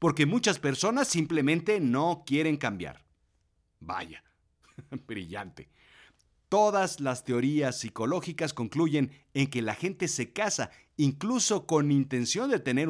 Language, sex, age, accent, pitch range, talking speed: Spanish, male, 50-69, Mexican, 105-170 Hz, 115 wpm